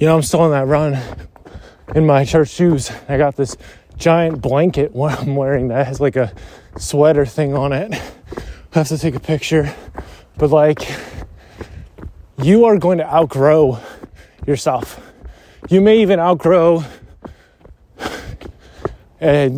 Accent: American